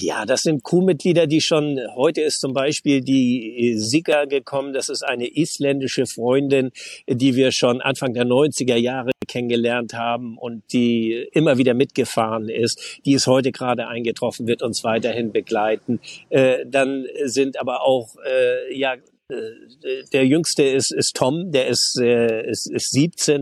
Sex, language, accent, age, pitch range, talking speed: male, German, German, 50-69, 120-135 Hz, 145 wpm